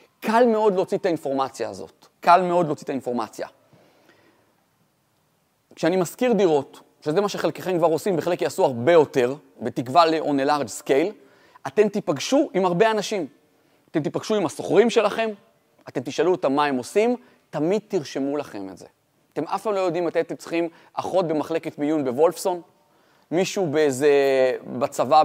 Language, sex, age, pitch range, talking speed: Hebrew, male, 30-49, 140-200 Hz, 150 wpm